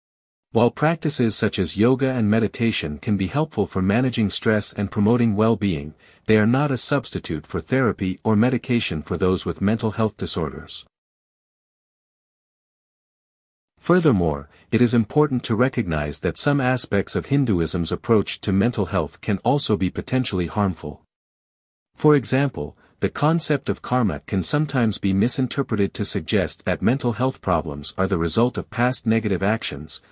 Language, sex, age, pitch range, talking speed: English, male, 50-69, 90-125 Hz, 145 wpm